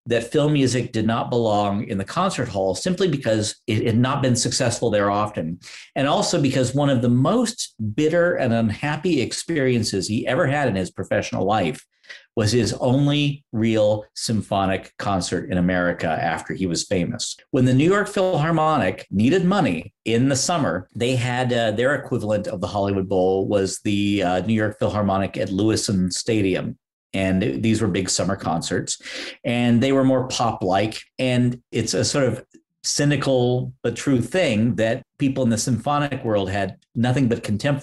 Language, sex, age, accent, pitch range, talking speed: English, male, 50-69, American, 105-130 Hz, 170 wpm